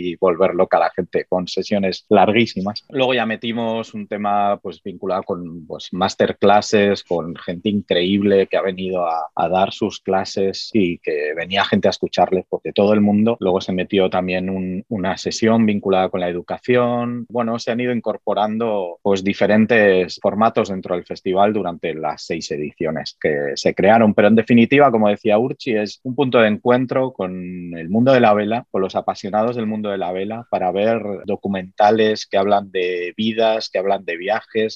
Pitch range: 95-115 Hz